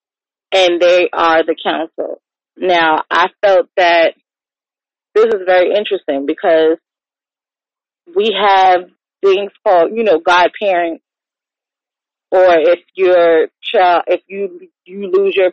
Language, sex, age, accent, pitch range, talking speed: English, female, 30-49, American, 175-210 Hz, 115 wpm